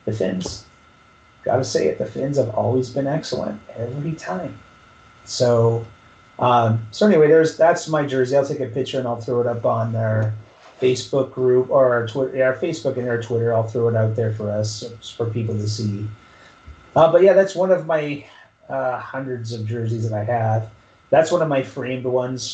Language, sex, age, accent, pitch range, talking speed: English, male, 30-49, American, 110-135 Hz, 195 wpm